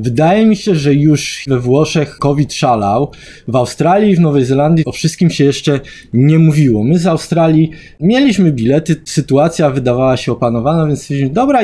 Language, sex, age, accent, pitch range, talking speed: Polish, male, 20-39, native, 125-165 Hz, 165 wpm